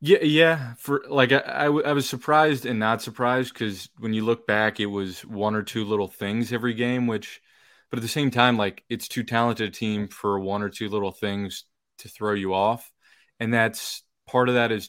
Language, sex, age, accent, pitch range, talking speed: English, male, 20-39, American, 95-115 Hz, 220 wpm